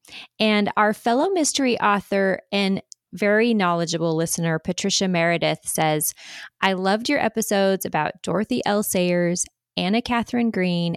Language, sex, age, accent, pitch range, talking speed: English, female, 20-39, American, 175-215 Hz, 125 wpm